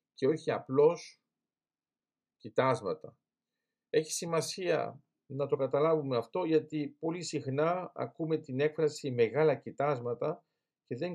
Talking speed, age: 110 wpm, 50-69